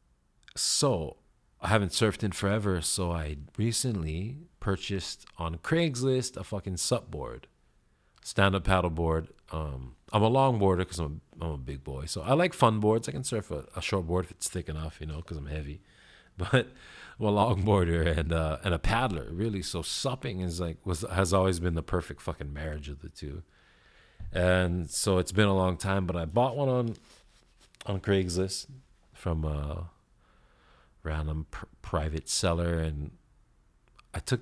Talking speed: 175 wpm